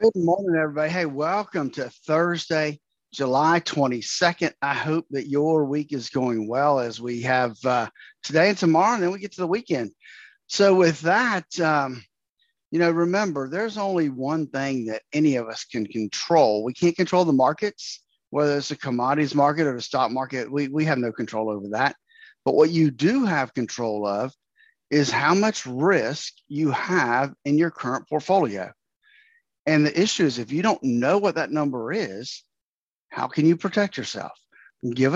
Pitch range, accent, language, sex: 130-175 Hz, American, English, male